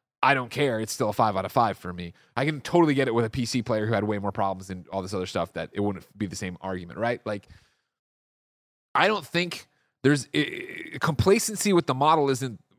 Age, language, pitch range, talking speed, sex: 30-49, English, 105-135 Hz, 230 wpm, male